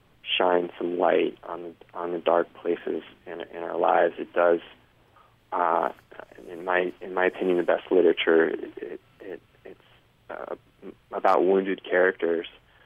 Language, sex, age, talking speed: English, male, 20-39, 145 wpm